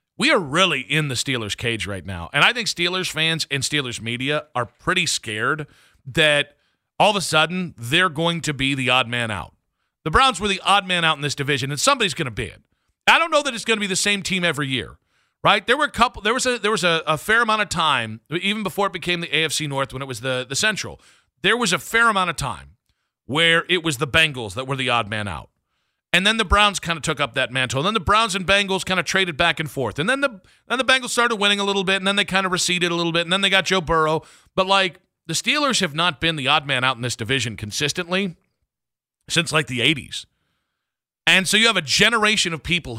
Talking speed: 255 wpm